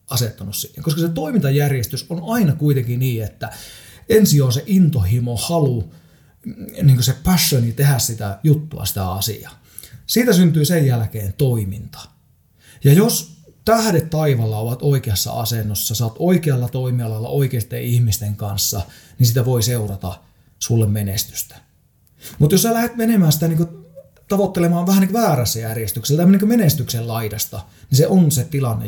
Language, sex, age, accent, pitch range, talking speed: Finnish, male, 30-49, native, 110-150 Hz, 135 wpm